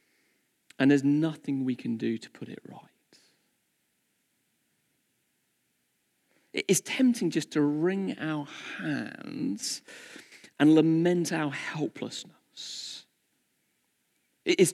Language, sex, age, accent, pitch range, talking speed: English, male, 40-59, British, 135-200 Hz, 90 wpm